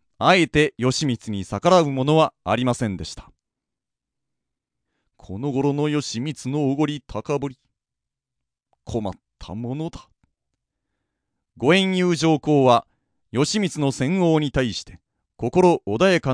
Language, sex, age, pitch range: Japanese, male, 40-59, 115-170 Hz